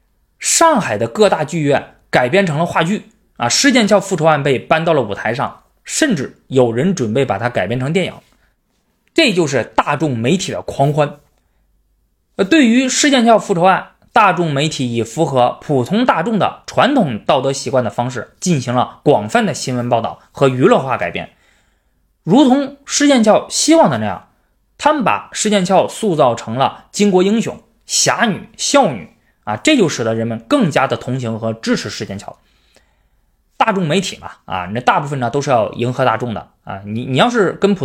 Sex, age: male, 20-39